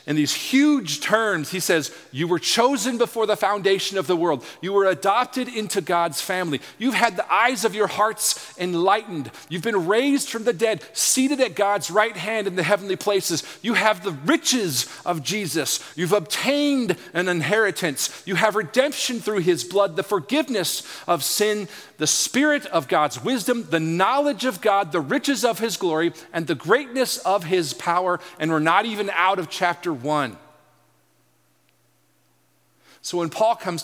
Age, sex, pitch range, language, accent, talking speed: 40-59, male, 165-220 Hz, English, American, 170 wpm